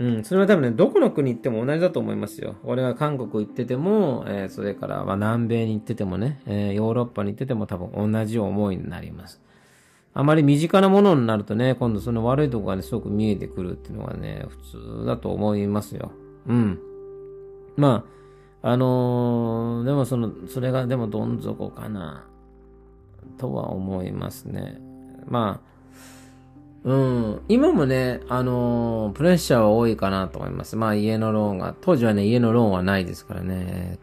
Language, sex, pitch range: Japanese, male, 100-130 Hz